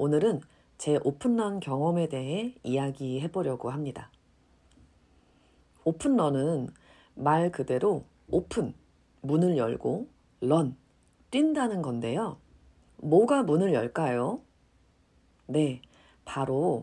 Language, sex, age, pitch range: Korean, female, 40-59, 135-195 Hz